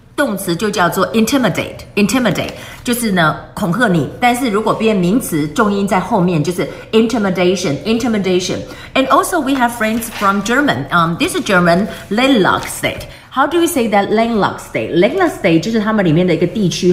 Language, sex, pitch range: Chinese, female, 170-235 Hz